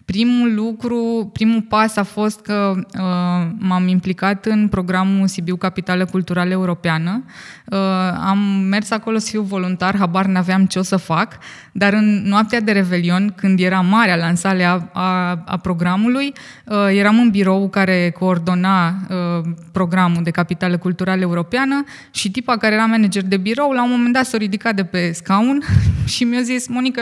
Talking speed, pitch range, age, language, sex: 160 wpm, 185-230 Hz, 20-39, Romanian, female